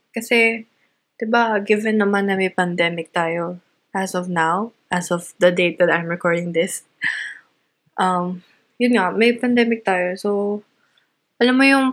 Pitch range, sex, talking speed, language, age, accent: 180-225 Hz, female, 145 wpm, Filipino, 20-39, native